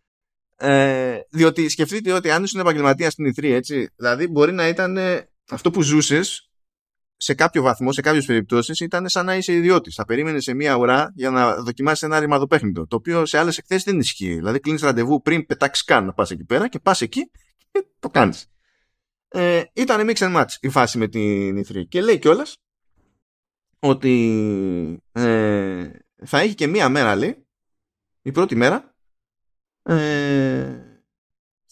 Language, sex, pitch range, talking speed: Greek, male, 115-165 Hz, 160 wpm